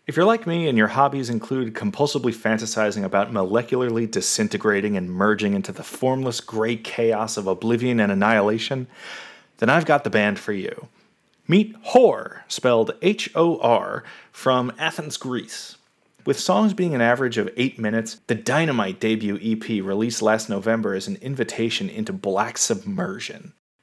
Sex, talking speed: male, 150 wpm